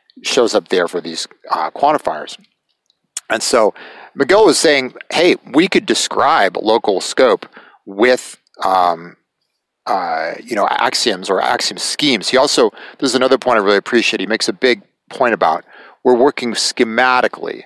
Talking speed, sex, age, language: 150 wpm, male, 40-59, English